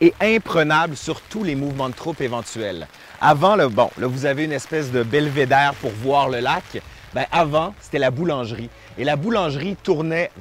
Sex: male